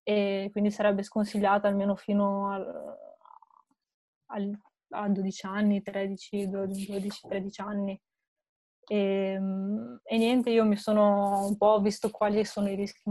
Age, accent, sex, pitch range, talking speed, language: 20-39, native, female, 200-210 Hz, 120 wpm, Italian